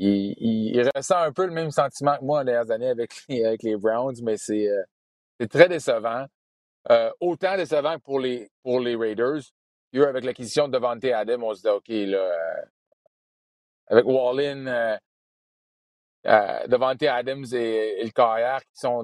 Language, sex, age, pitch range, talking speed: French, male, 30-49, 115-140 Hz, 175 wpm